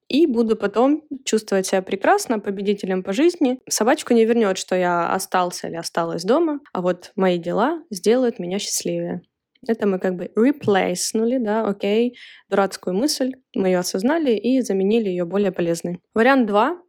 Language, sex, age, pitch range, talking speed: Russian, female, 20-39, 180-225 Hz, 160 wpm